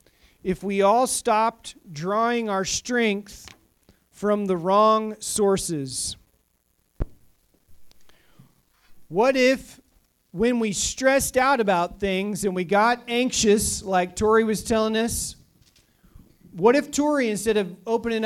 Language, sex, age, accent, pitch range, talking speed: English, male, 40-59, American, 180-235 Hz, 110 wpm